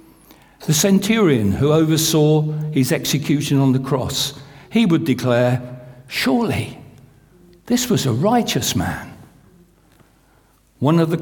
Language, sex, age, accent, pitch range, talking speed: English, male, 60-79, British, 125-160 Hz, 110 wpm